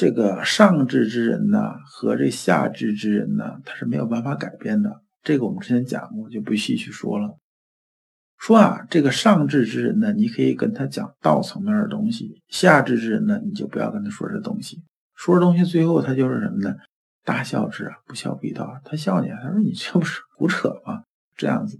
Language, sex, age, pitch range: Chinese, male, 50-69, 135-215 Hz